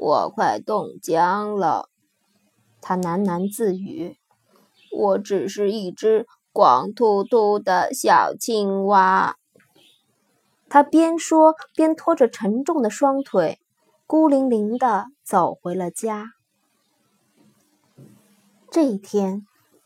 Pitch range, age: 200-275 Hz, 20-39